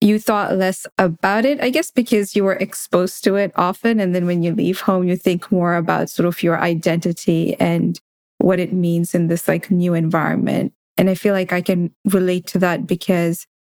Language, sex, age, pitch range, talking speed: English, female, 20-39, 175-200 Hz, 205 wpm